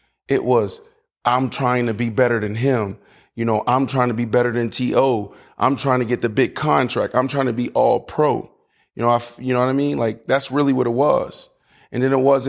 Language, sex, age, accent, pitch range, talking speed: English, male, 20-39, American, 125-150 Hz, 235 wpm